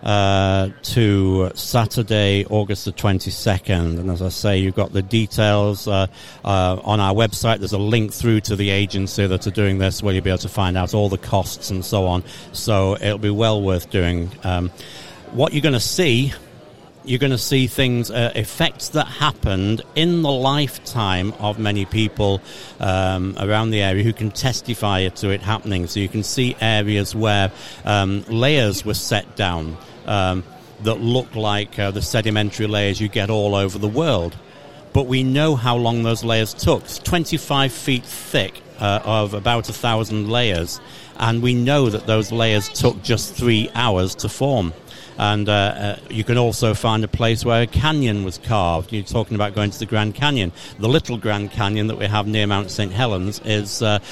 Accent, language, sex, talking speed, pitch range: British, English, male, 185 wpm, 100-120 Hz